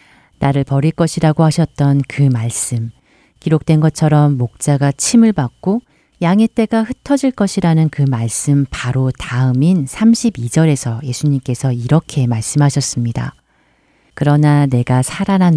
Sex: female